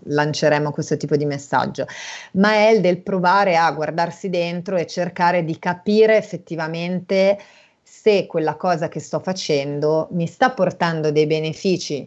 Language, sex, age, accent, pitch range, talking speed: Italian, female, 30-49, native, 145-185 Hz, 145 wpm